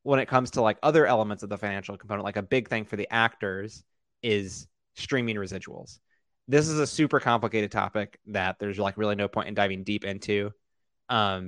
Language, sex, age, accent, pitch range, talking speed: English, male, 20-39, American, 100-115 Hz, 200 wpm